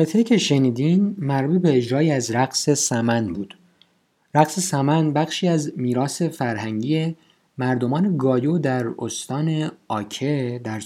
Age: 50-69